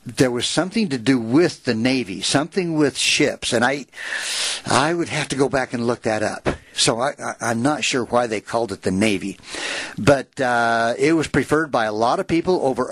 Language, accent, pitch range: English, American, 120-155 Hz